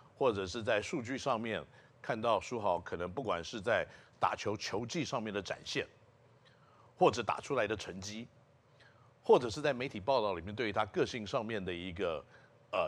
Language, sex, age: Chinese, male, 50-69